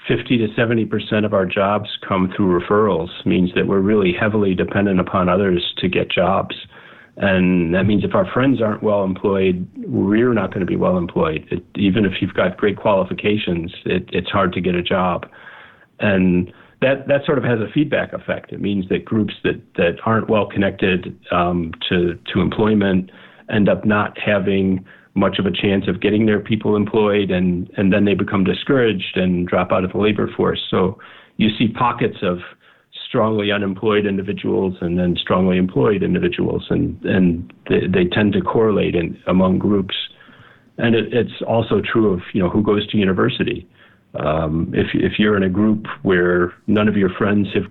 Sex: male